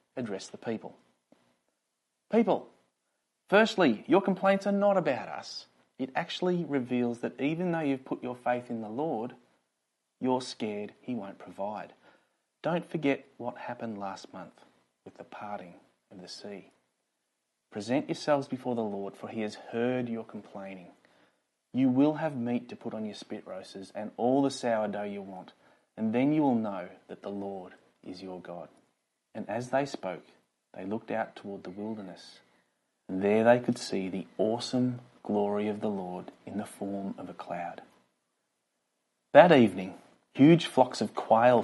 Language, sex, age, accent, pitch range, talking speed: English, male, 30-49, Australian, 95-130 Hz, 160 wpm